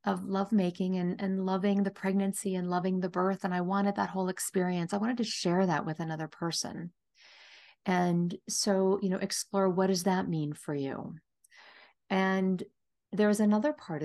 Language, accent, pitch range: English, American, 165-200 Hz